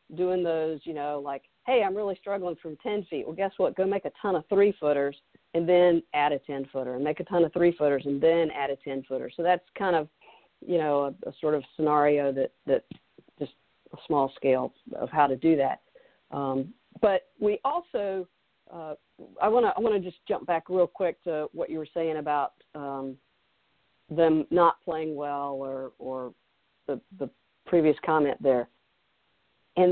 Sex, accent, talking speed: female, American, 185 wpm